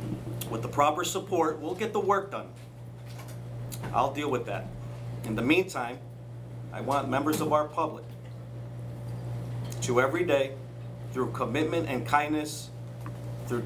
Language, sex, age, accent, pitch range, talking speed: English, male, 50-69, American, 120-135 Hz, 130 wpm